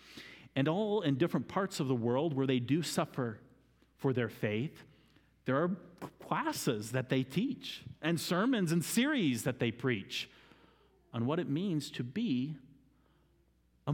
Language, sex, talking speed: English, male, 150 wpm